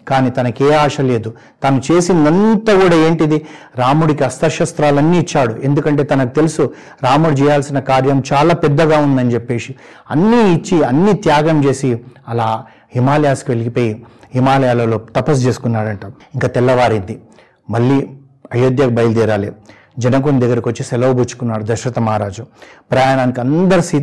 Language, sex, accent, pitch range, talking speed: Telugu, male, native, 120-150 Hz, 115 wpm